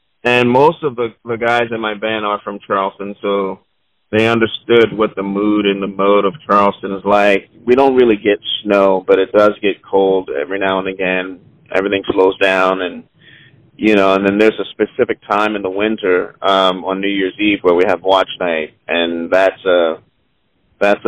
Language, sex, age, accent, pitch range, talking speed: English, male, 40-59, American, 100-140 Hz, 195 wpm